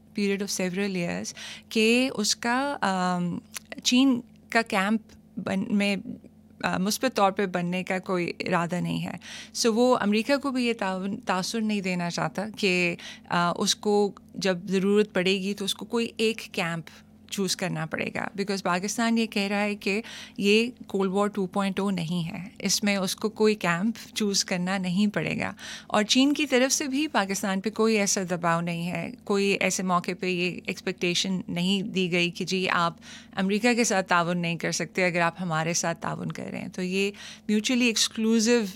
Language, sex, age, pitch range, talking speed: Urdu, female, 20-39, 180-220 Hz, 165 wpm